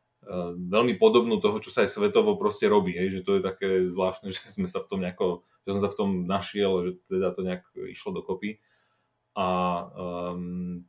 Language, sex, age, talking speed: Slovak, male, 30-49, 195 wpm